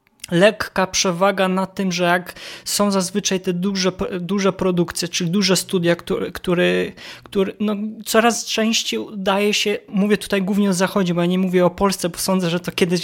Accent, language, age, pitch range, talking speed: native, Polish, 20-39, 175-200 Hz, 180 wpm